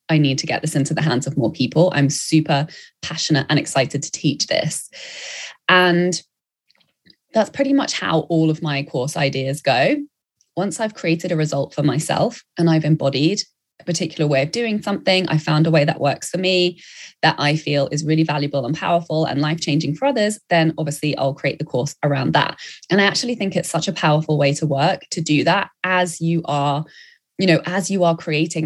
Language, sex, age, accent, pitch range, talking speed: English, female, 20-39, British, 150-185 Hz, 205 wpm